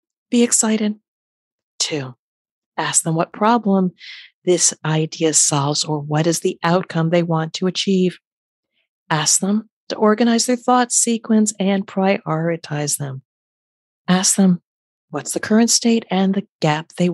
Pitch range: 160-200 Hz